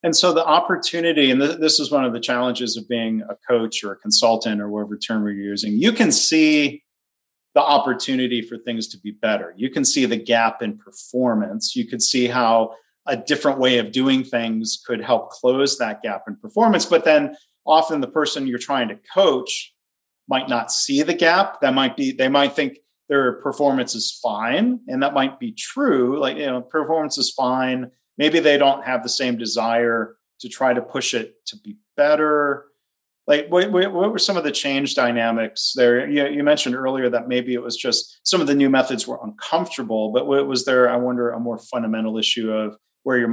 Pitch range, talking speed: 115-160 Hz, 200 wpm